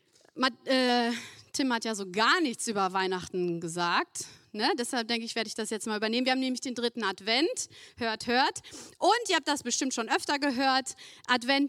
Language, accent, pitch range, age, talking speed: German, German, 230-285 Hz, 30-49, 185 wpm